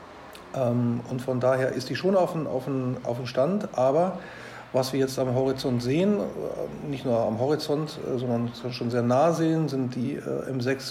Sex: male